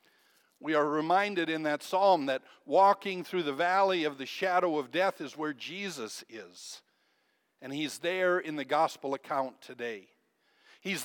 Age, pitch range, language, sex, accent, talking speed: 60-79, 135-180 Hz, English, male, American, 155 wpm